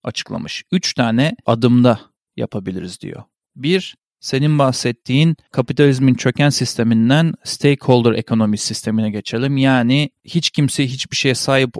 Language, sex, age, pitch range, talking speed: Turkish, male, 40-59, 120-160 Hz, 110 wpm